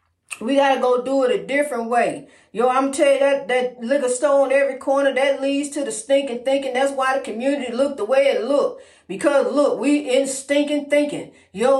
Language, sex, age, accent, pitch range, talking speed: English, female, 40-59, American, 250-280 Hz, 210 wpm